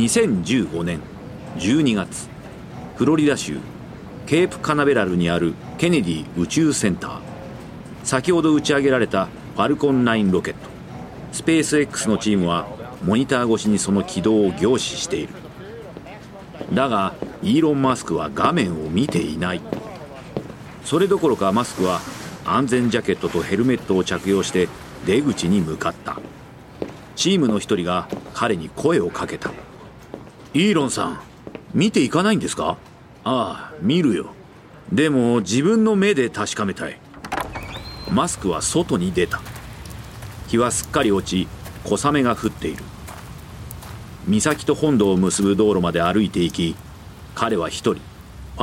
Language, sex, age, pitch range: Japanese, male, 40-59, 90-135 Hz